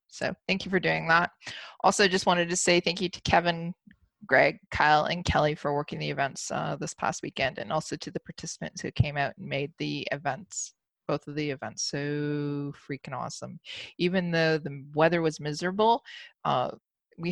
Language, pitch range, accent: English, 150-190 Hz, American